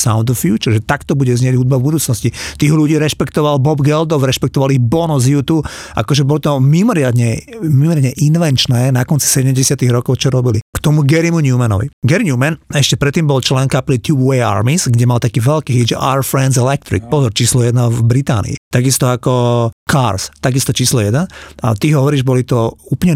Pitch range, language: 120-145 Hz, Slovak